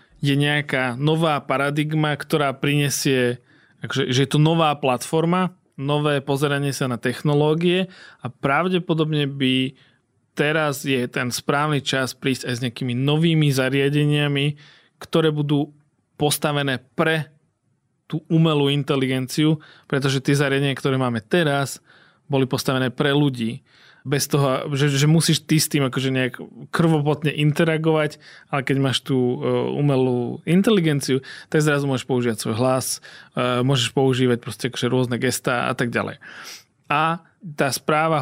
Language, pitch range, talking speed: Slovak, 130-150 Hz, 125 wpm